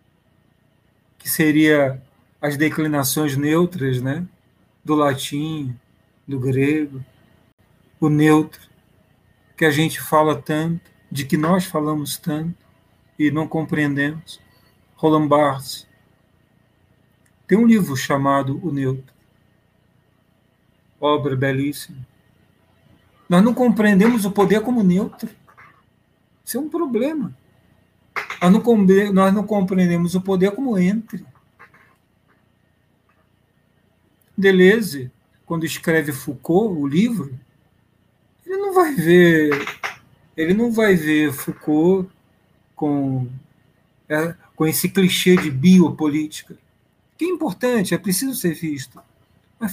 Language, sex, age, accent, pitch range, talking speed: Portuguese, male, 40-59, Brazilian, 140-190 Hz, 100 wpm